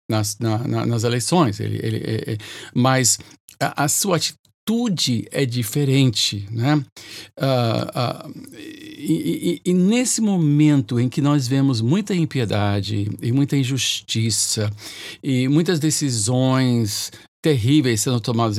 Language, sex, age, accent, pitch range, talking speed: Portuguese, male, 60-79, Brazilian, 115-165 Hz, 125 wpm